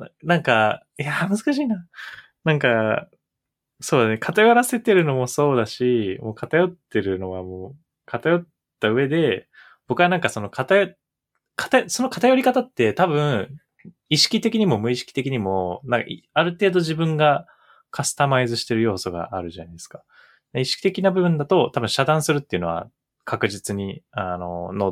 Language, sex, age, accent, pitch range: Japanese, male, 20-39, native, 100-165 Hz